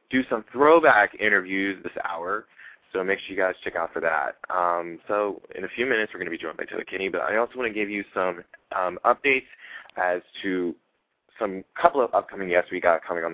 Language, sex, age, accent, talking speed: English, male, 20-39, American, 225 wpm